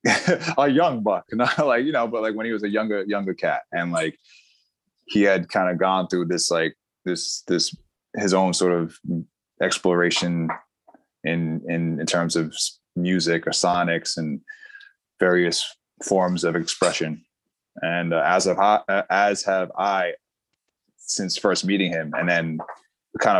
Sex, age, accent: male, 20-39, American